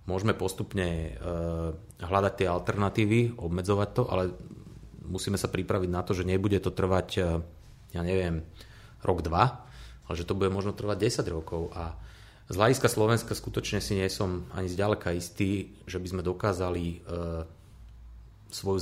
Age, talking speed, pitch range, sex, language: 30-49, 145 wpm, 90-110 Hz, male, Slovak